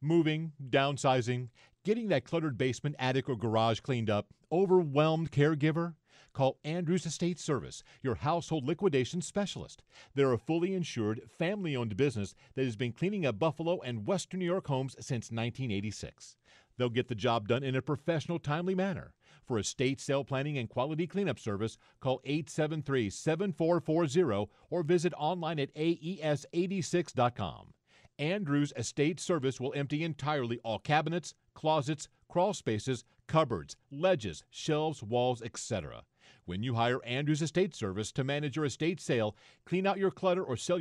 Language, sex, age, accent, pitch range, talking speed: English, male, 50-69, American, 125-170 Hz, 145 wpm